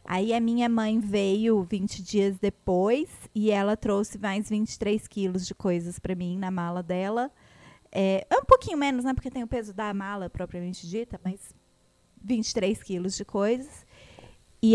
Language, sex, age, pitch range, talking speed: English, female, 20-39, 190-235 Hz, 165 wpm